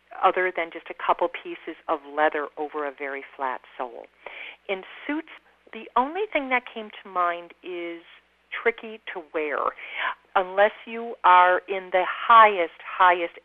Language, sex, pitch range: English, female, 175-260 Hz